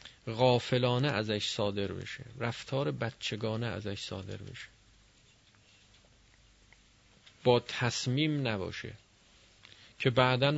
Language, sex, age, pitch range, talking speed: Persian, male, 40-59, 105-130 Hz, 80 wpm